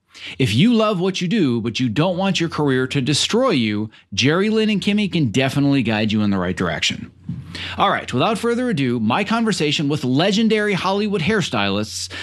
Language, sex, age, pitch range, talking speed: English, male, 30-49, 115-175 Hz, 185 wpm